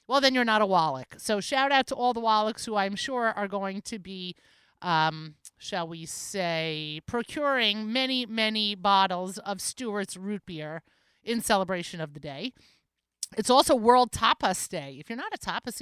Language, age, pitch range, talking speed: English, 30-49, 180-235 Hz, 180 wpm